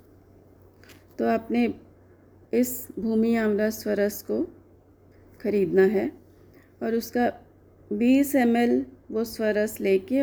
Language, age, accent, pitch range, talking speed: Hindi, 40-59, native, 195-250 Hz, 95 wpm